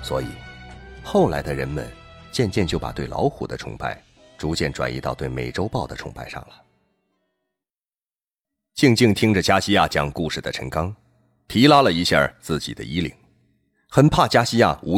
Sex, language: male, Chinese